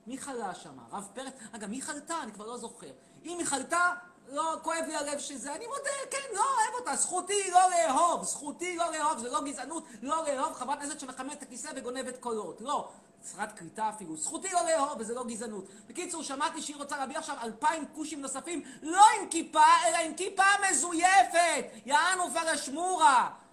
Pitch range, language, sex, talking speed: 265-355 Hz, Hebrew, male, 185 wpm